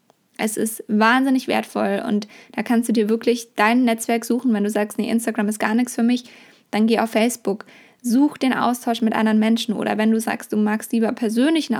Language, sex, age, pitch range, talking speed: German, female, 20-39, 215-235 Hz, 210 wpm